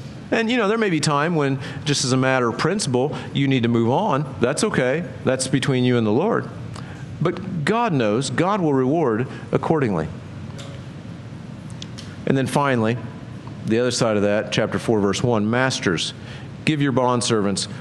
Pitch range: 120-150 Hz